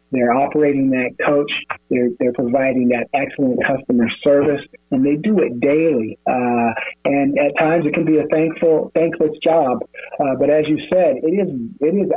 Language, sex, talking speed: English, male, 175 wpm